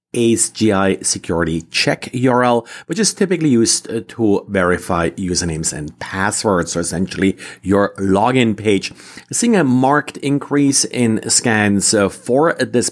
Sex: male